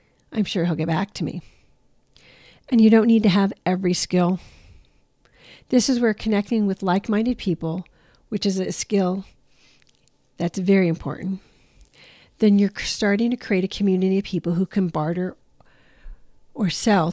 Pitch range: 180-220 Hz